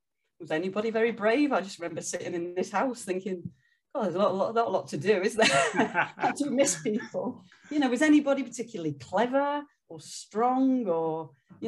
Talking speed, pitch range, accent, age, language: 205 wpm, 165-220 Hz, British, 40-59, English